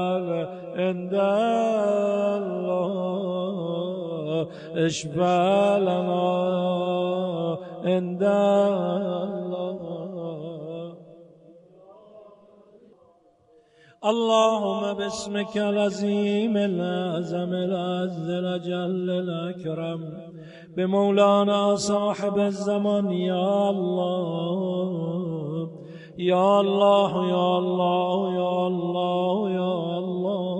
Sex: male